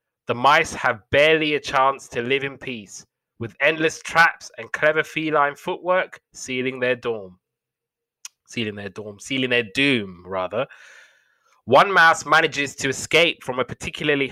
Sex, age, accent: male, 20-39, British